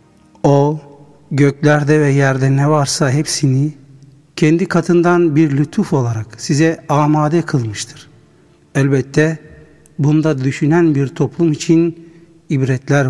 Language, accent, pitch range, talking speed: Turkish, native, 135-165 Hz, 100 wpm